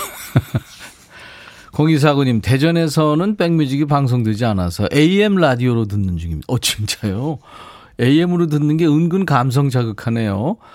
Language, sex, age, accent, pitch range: Korean, male, 40-59, native, 105-150 Hz